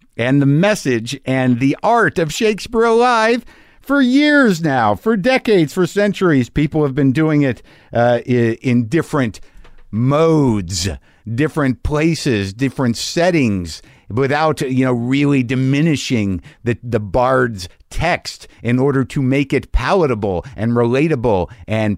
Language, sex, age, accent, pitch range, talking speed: English, male, 50-69, American, 120-170 Hz, 130 wpm